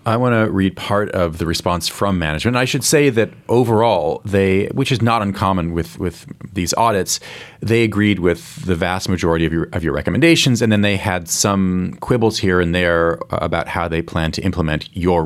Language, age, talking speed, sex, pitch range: English, 30-49, 205 wpm, male, 90-115 Hz